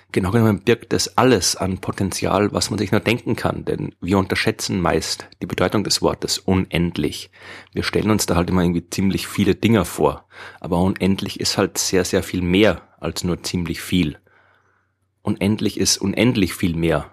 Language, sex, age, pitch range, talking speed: German, male, 30-49, 90-110 Hz, 175 wpm